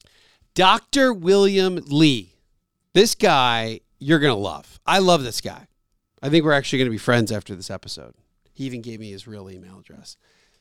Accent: American